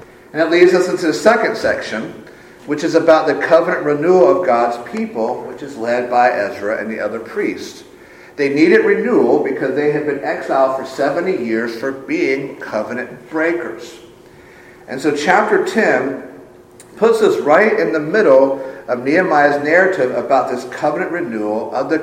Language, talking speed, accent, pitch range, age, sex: English, 165 wpm, American, 145-205 Hz, 50-69, male